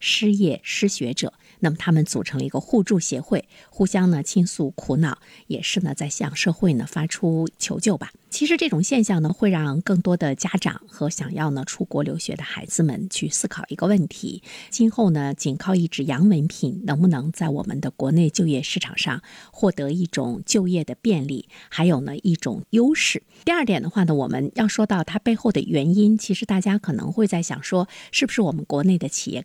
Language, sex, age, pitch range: Chinese, female, 50-69, 155-205 Hz